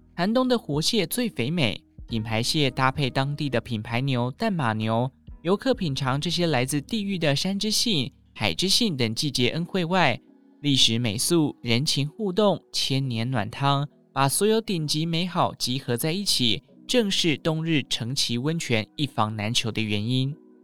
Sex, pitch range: male, 120-165 Hz